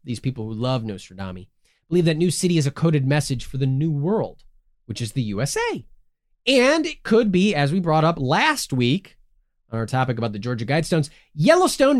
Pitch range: 115-180 Hz